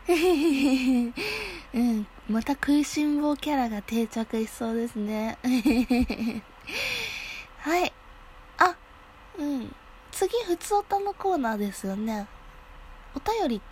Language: Japanese